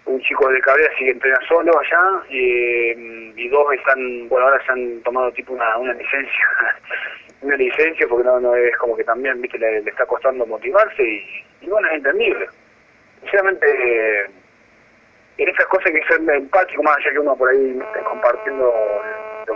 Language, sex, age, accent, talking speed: Spanish, male, 30-49, Argentinian, 175 wpm